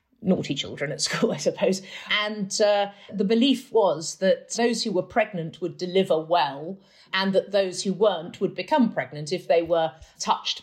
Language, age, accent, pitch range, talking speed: English, 40-59, British, 165-230 Hz, 175 wpm